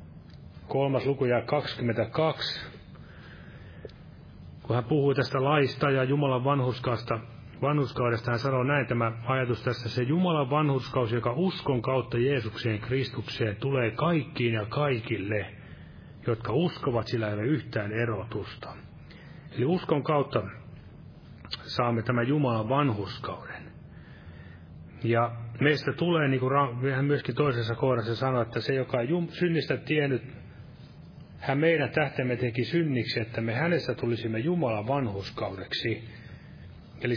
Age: 30-49